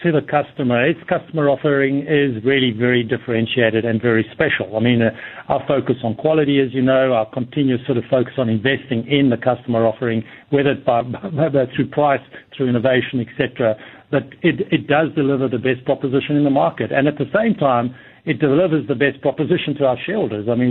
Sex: male